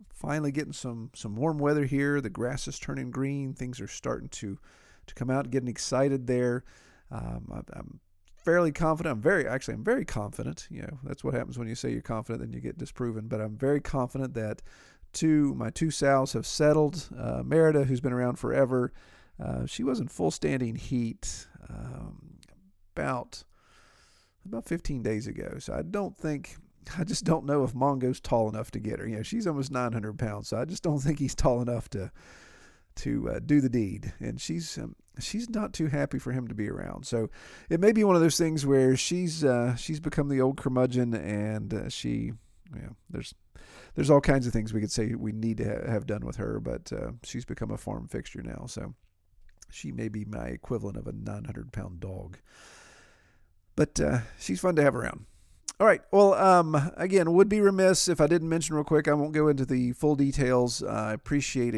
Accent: American